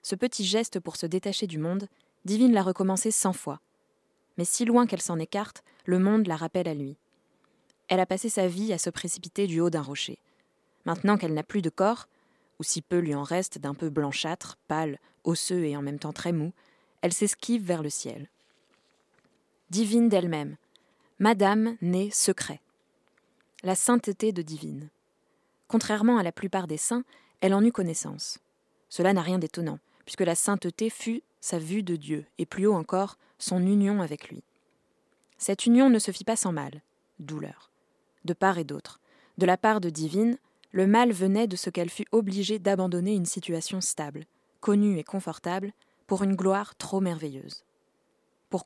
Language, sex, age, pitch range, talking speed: French, female, 20-39, 165-210 Hz, 175 wpm